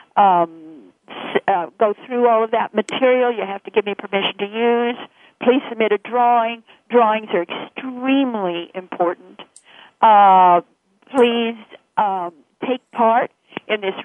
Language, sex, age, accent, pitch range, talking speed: English, female, 50-69, American, 200-245 Hz, 130 wpm